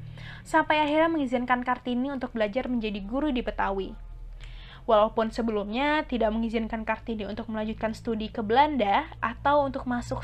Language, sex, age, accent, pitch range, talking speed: Indonesian, female, 20-39, native, 210-270 Hz, 135 wpm